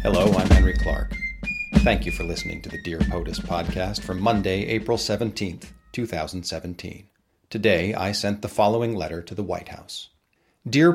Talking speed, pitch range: 160 wpm, 105-135 Hz